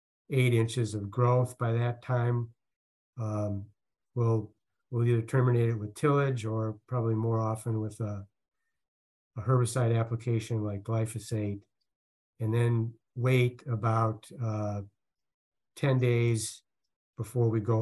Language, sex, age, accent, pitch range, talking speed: English, male, 50-69, American, 105-120 Hz, 120 wpm